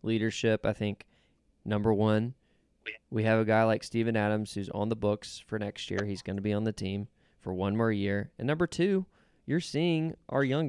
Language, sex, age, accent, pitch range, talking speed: English, male, 20-39, American, 105-125 Hz, 210 wpm